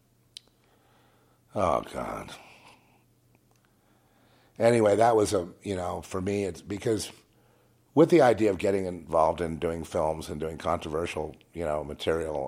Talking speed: 130 wpm